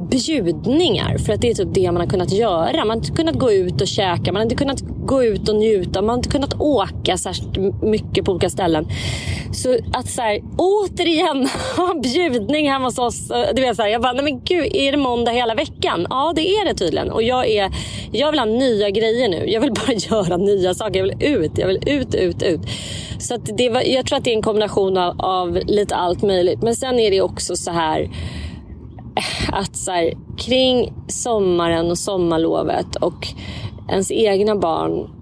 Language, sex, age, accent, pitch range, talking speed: Swedish, female, 30-49, native, 170-235 Hz, 210 wpm